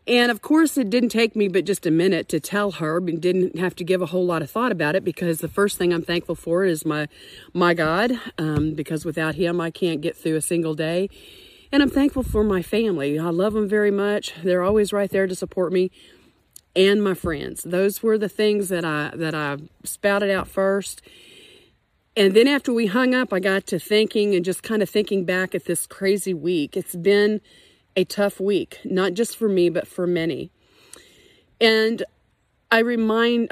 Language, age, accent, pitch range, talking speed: English, 40-59, American, 170-210 Hz, 205 wpm